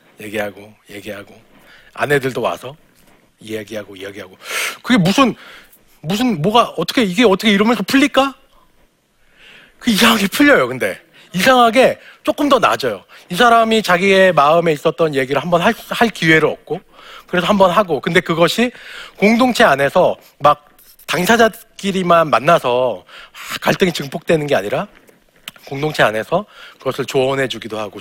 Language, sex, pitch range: Korean, male, 125-205 Hz